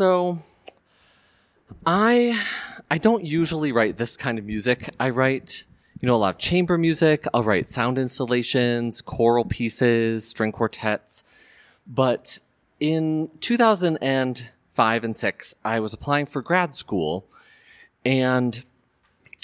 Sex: male